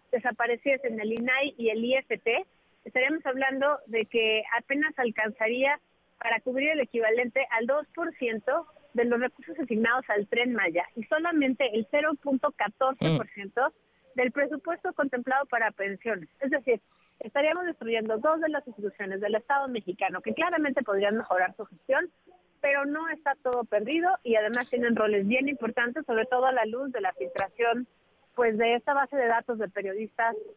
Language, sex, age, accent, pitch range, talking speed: Spanish, female, 40-59, Mexican, 220-280 Hz, 155 wpm